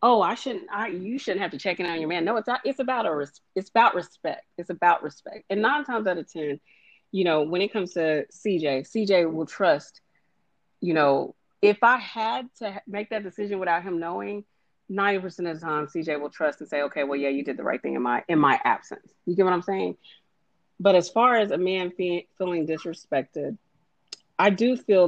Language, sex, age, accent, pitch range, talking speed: English, female, 30-49, American, 165-215 Hz, 225 wpm